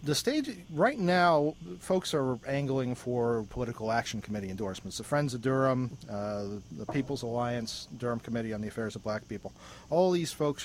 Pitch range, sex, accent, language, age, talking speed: 110-130 Hz, male, American, English, 40-59, 180 wpm